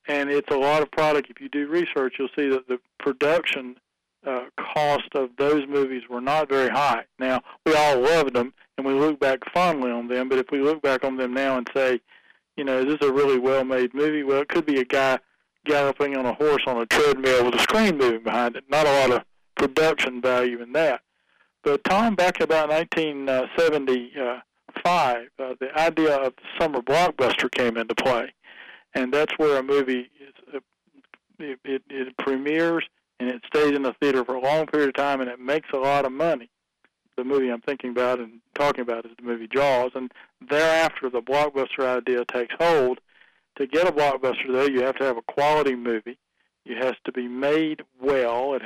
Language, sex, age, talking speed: English, male, 50-69, 200 wpm